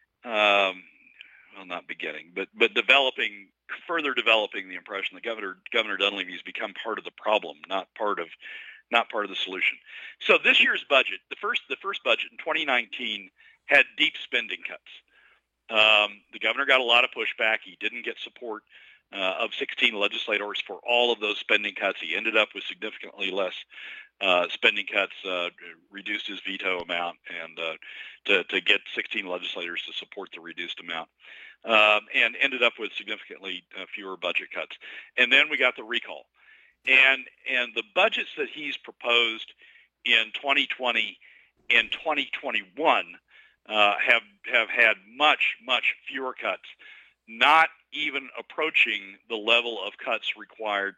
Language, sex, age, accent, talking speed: English, male, 50-69, American, 160 wpm